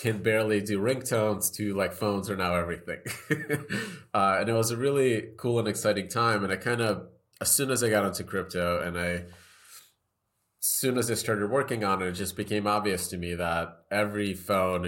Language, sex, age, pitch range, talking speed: English, male, 30-49, 90-110 Hz, 200 wpm